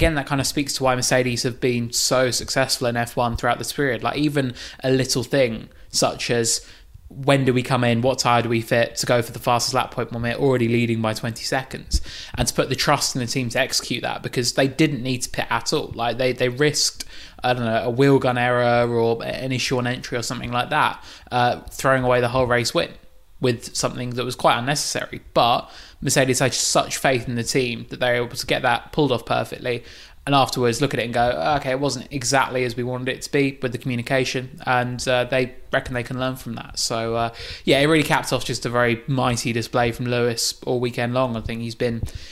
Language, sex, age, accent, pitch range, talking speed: English, male, 20-39, British, 120-135 Hz, 235 wpm